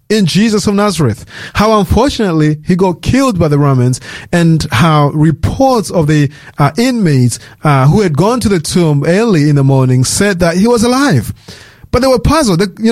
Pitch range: 145-180 Hz